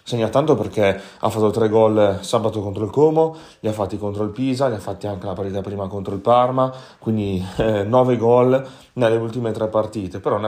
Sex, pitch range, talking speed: male, 100-115 Hz, 210 wpm